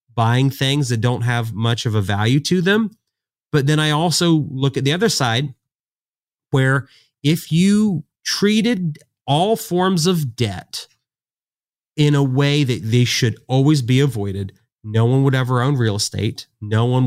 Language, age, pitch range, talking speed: English, 30-49, 115-145 Hz, 160 wpm